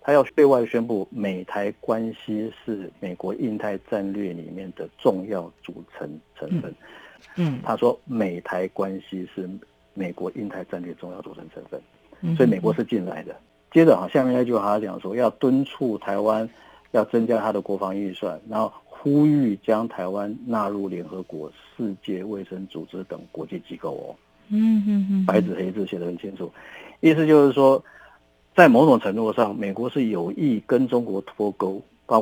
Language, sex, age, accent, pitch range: Chinese, male, 50-69, native, 95-125 Hz